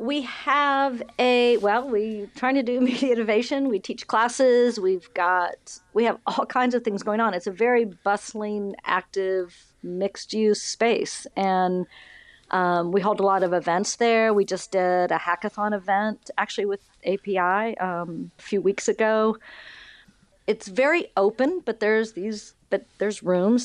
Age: 50-69